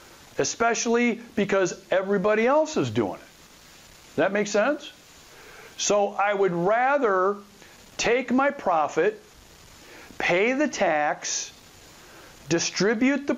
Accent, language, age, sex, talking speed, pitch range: American, English, 50-69, male, 100 wpm, 155-230 Hz